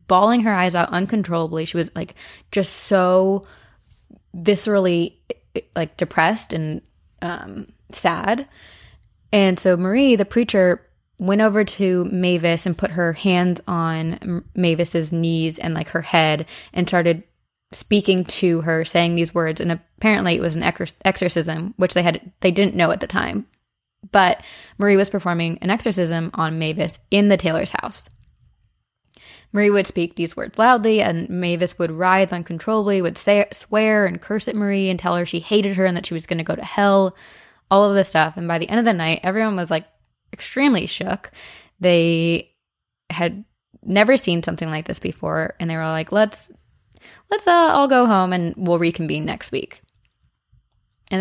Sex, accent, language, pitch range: female, American, English, 170-200 Hz